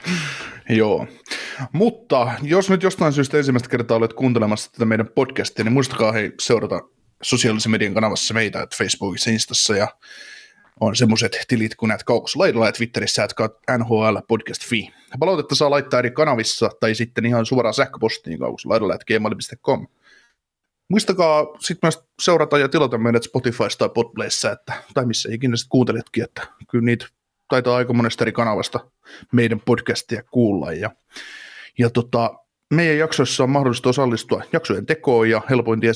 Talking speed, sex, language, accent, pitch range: 150 wpm, male, Finnish, native, 110-130 Hz